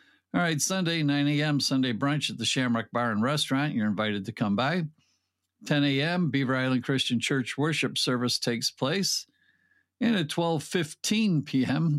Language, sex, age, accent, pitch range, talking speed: English, male, 50-69, American, 125-170 Hz, 160 wpm